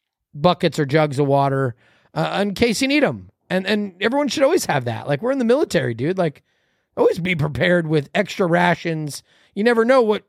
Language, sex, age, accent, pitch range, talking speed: English, male, 30-49, American, 145-225 Hz, 205 wpm